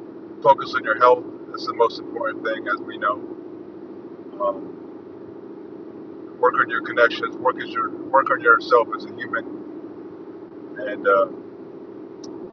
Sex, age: male, 50-69